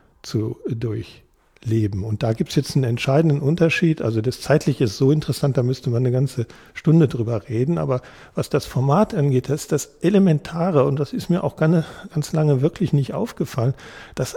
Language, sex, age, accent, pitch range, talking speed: German, male, 50-69, German, 120-155 Hz, 185 wpm